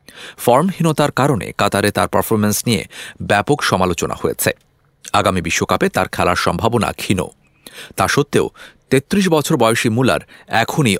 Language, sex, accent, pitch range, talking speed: English, male, Indian, 90-125 Hz, 125 wpm